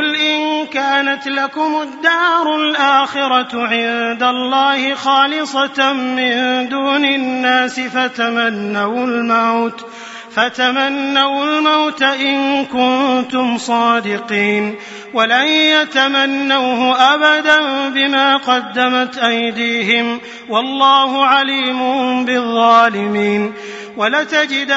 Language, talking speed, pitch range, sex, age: Arabic, 65 wpm, 235-275 Hz, male, 30-49